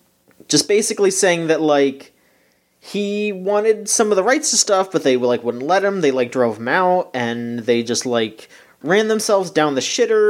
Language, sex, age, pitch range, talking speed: English, male, 30-49, 115-150 Hz, 190 wpm